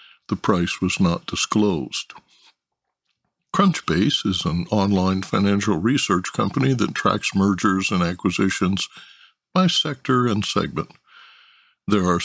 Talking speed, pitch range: 115 wpm, 90-125 Hz